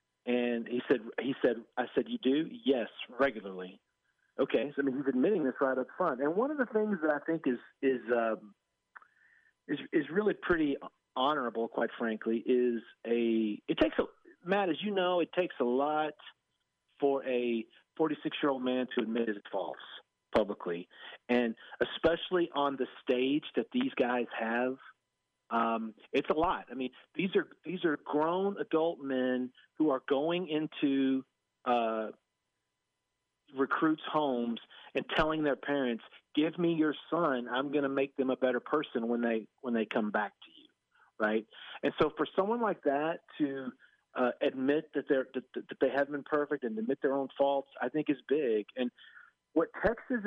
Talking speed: 170 wpm